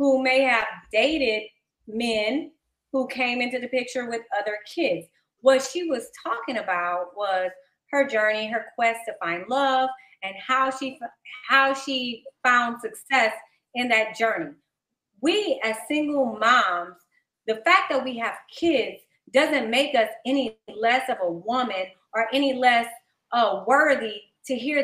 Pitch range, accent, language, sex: 220-290 Hz, American, English, female